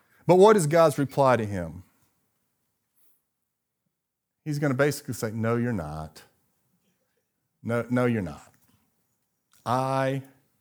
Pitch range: 100-140 Hz